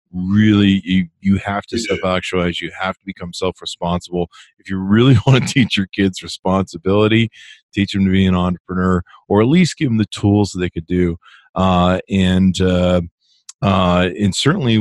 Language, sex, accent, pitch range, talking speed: English, male, American, 90-105 Hz, 175 wpm